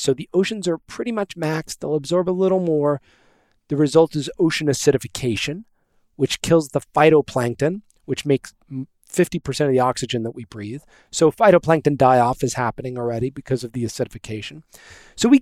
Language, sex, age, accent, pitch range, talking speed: English, male, 40-59, American, 120-160 Hz, 165 wpm